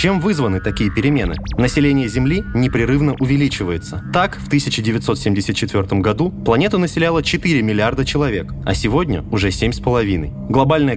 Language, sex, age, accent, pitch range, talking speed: Russian, male, 20-39, native, 105-145 Hz, 120 wpm